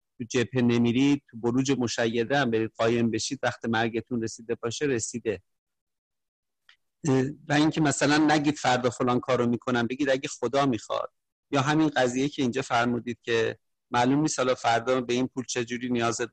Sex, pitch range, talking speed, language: male, 120-150 Hz, 160 wpm, English